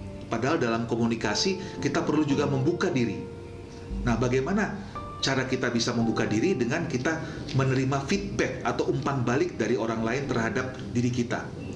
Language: Indonesian